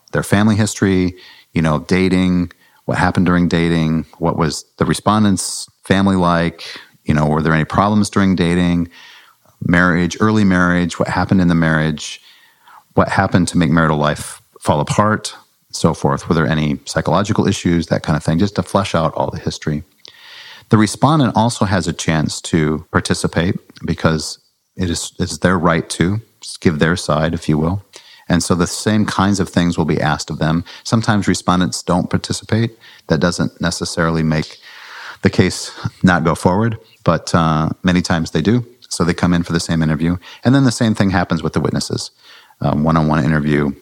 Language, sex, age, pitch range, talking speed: English, male, 40-59, 80-95 Hz, 175 wpm